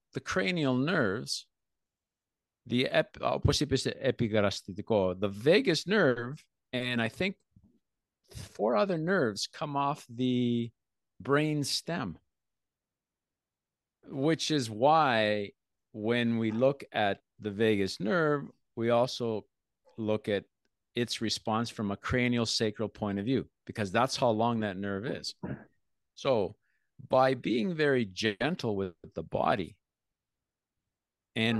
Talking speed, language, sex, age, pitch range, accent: 110 wpm, Greek, male, 50-69, 105-135 Hz, American